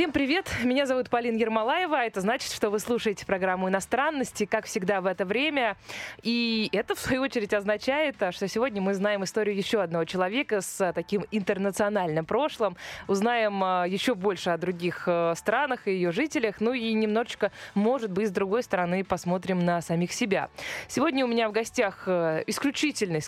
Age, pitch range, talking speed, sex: 20-39, 170-225 Hz, 160 wpm, female